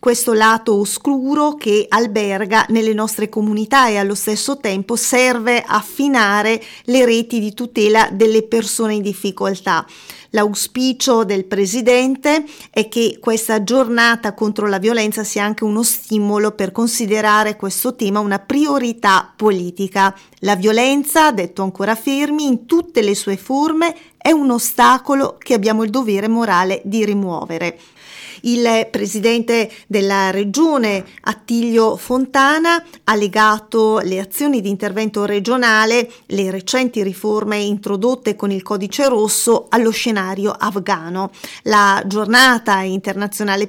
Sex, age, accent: female, 40-59, native